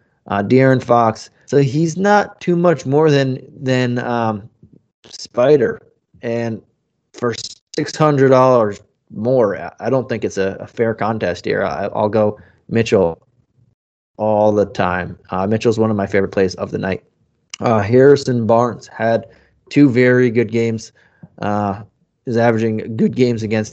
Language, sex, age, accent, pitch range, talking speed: English, male, 20-39, American, 105-125 Hz, 150 wpm